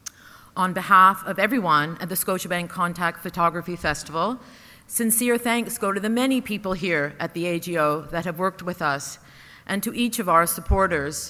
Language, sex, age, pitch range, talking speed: English, female, 50-69, 175-215 Hz, 170 wpm